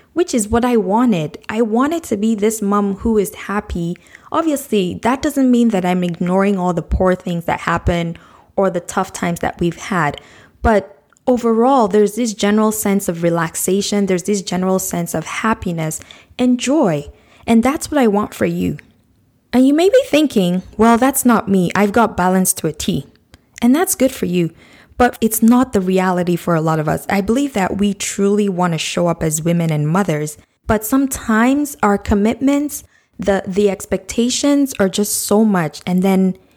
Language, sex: English, female